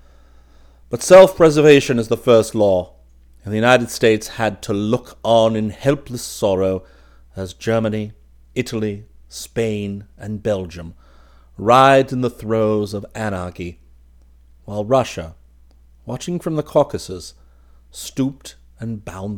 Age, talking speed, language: 40-59, 120 wpm, English